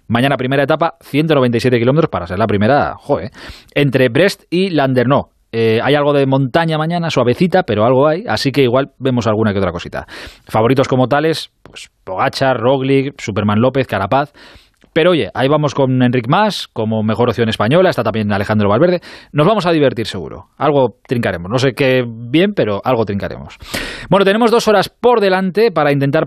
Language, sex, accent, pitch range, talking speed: Spanish, male, Spanish, 110-155 Hz, 180 wpm